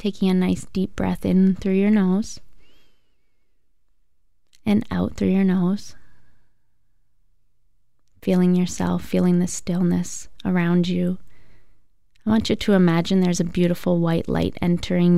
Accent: American